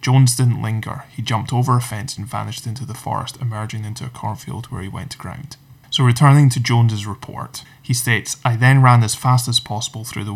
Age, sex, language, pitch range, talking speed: 20-39, male, English, 110-130 Hz, 220 wpm